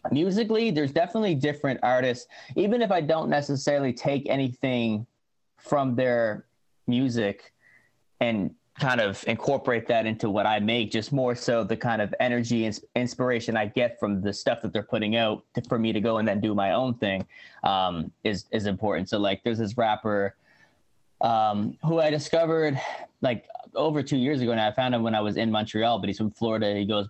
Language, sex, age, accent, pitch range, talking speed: English, male, 20-39, American, 110-140 Hz, 190 wpm